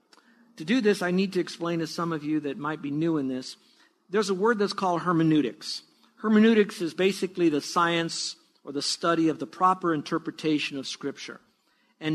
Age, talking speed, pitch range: 50-69, 190 wpm, 155-195 Hz